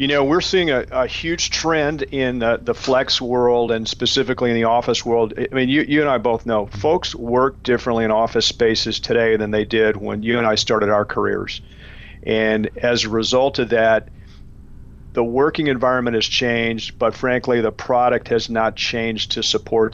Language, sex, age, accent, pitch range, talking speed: English, male, 50-69, American, 110-120 Hz, 195 wpm